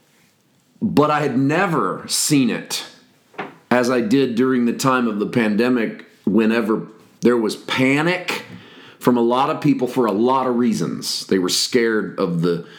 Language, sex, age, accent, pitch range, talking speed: English, male, 40-59, American, 110-135 Hz, 160 wpm